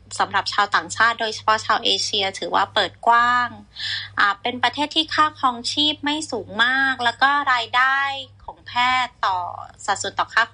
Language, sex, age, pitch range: Thai, female, 20-39, 205-260 Hz